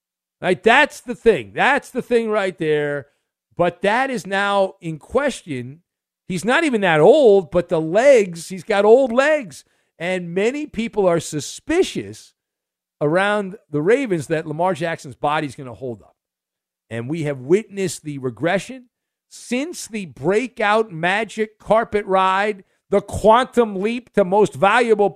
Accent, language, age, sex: American, English, 50-69, male